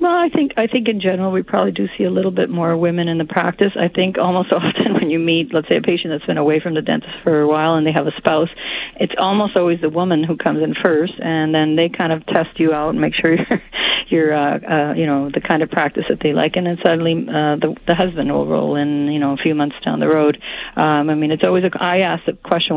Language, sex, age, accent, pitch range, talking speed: English, female, 40-59, American, 155-180 Hz, 275 wpm